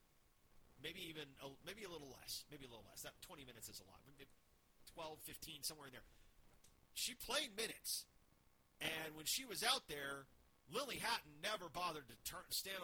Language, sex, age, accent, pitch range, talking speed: English, male, 40-59, American, 130-175 Hz, 180 wpm